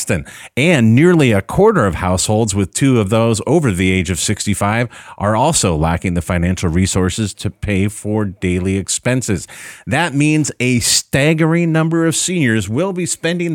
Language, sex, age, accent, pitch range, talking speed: English, male, 30-49, American, 95-140 Hz, 160 wpm